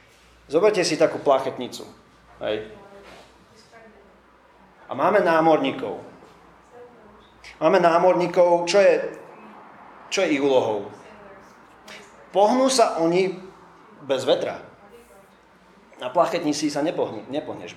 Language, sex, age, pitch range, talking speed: Slovak, male, 30-49, 145-185 Hz, 85 wpm